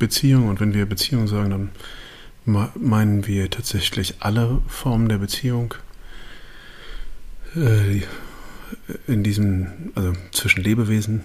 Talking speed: 100 wpm